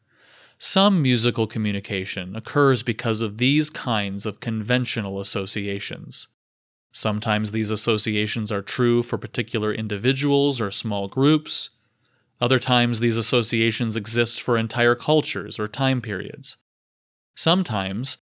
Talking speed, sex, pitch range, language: 110 wpm, male, 105-125 Hz, English